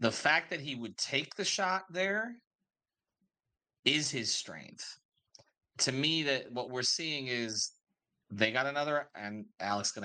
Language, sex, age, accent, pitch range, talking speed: English, male, 30-49, American, 115-150 Hz, 150 wpm